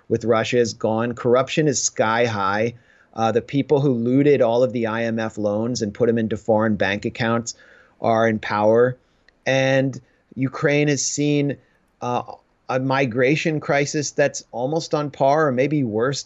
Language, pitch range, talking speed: English, 115-140 Hz, 160 wpm